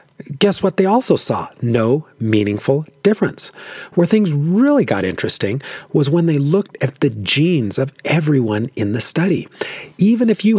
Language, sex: English, male